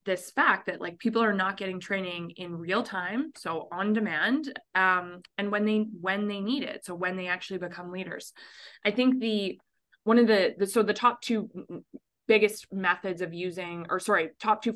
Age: 20-39